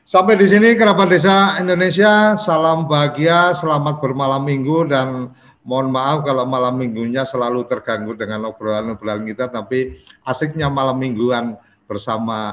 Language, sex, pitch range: Indonesian, male, 115-150 Hz